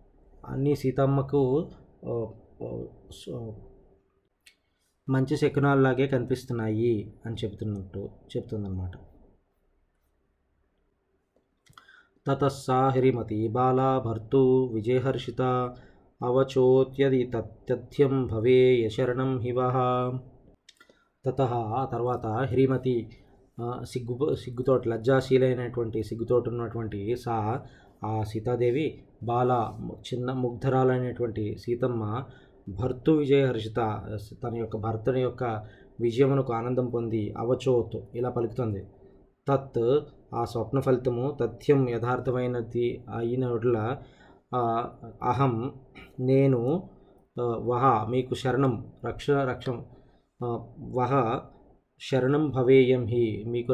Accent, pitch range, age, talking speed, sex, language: native, 115-130 Hz, 20-39, 65 wpm, male, Telugu